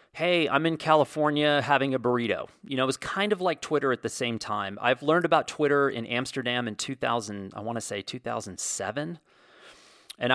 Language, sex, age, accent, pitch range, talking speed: English, male, 30-49, American, 110-140 Hz, 190 wpm